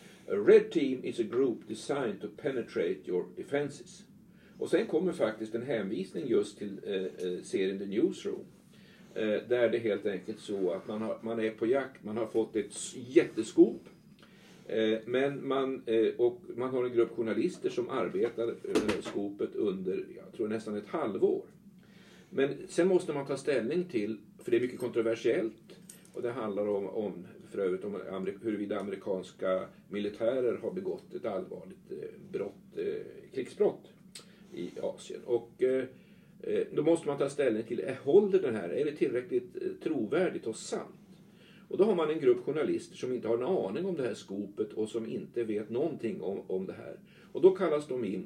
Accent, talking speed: native, 170 wpm